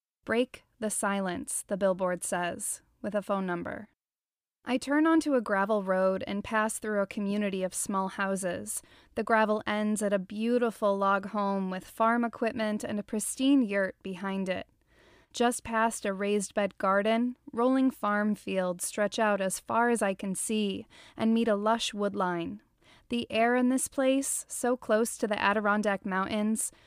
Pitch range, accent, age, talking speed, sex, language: 195-230 Hz, American, 20-39, 165 wpm, female, English